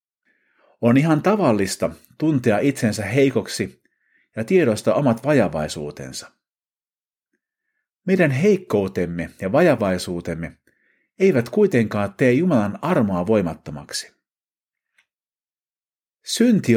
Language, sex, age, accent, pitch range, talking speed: Finnish, male, 50-69, native, 90-155 Hz, 75 wpm